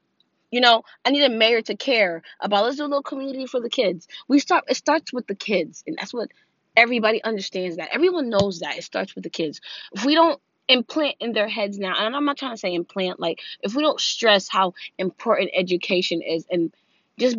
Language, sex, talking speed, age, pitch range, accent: English, female, 215 wpm, 20-39, 175-245 Hz, American